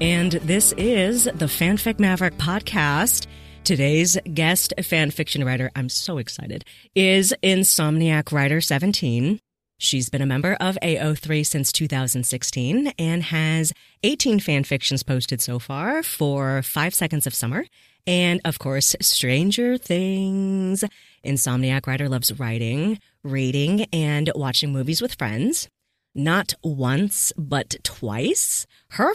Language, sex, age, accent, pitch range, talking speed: English, female, 30-49, American, 140-195 Hz, 125 wpm